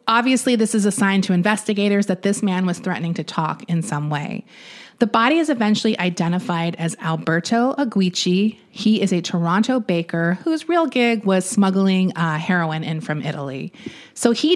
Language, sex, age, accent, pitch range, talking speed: English, female, 30-49, American, 175-220 Hz, 170 wpm